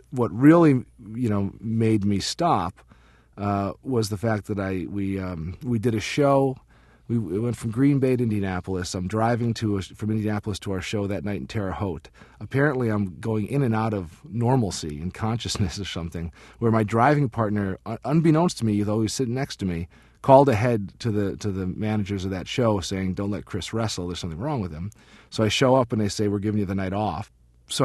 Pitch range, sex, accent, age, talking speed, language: 95-115 Hz, male, American, 40-59, 215 wpm, English